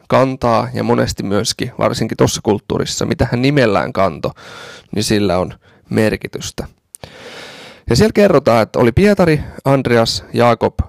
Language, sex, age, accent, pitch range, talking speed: Finnish, male, 30-49, native, 105-135 Hz, 125 wpm